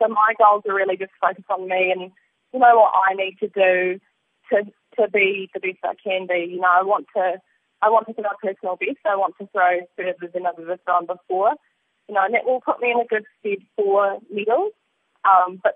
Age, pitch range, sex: 20-39, 180-205 Hz, female